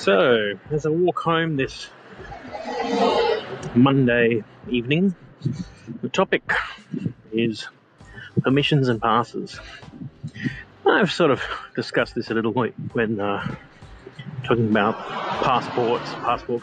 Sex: male